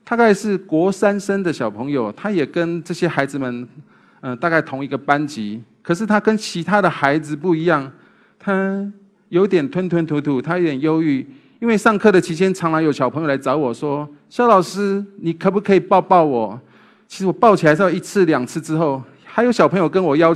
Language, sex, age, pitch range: Chinese, male, 30-49, 135-200 Hz